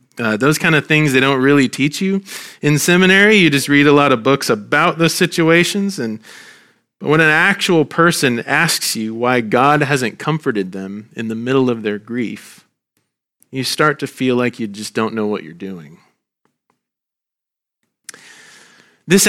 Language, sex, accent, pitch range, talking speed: English, male, American, 125-170 Hz, 170 wpm